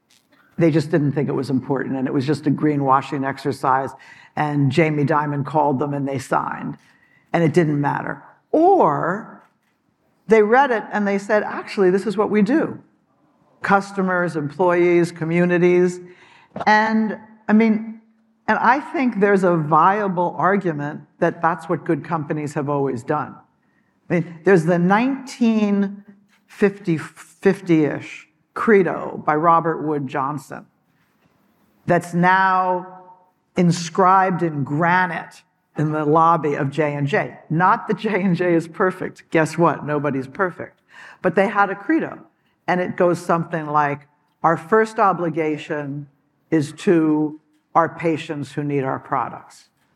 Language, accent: English, American